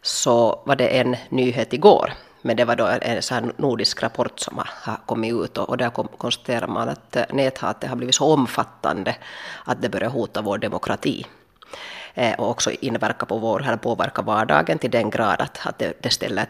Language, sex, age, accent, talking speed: Swedish, female, 30-49, Finnish, 175 wpm